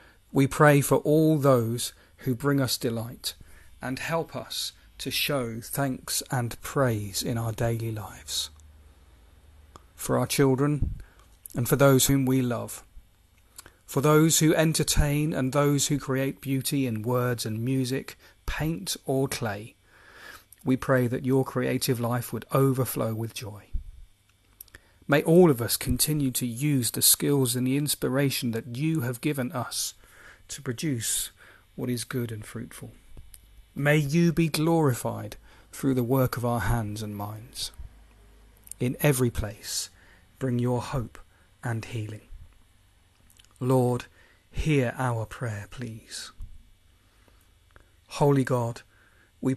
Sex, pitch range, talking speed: male, 100-135 Hz, 130 wpm